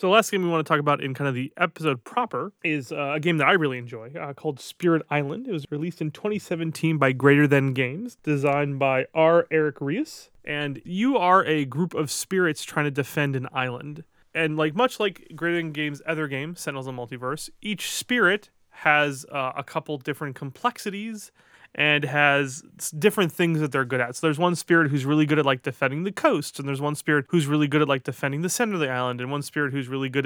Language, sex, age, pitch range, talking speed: English, male, 30-49, 140-165 Hz, 225 wpm